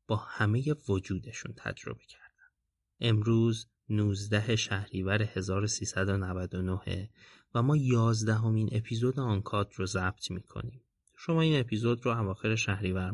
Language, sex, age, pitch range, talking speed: Persian, male, 30-49, 100-120 Hz, 110 wpm